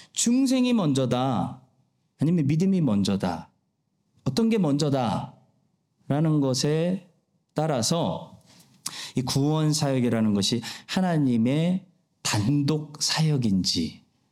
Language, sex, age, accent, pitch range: Korean, male, 40-59, native, 115-185 Hz